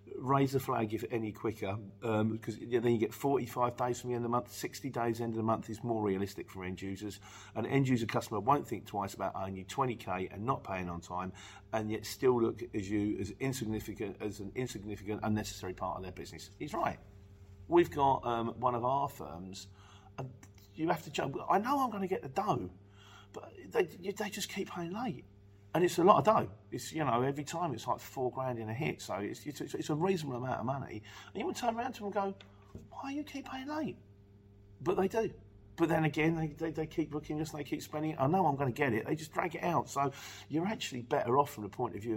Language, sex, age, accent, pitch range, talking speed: English, male, 40-59, British, 100-155 Hz, 250 wpm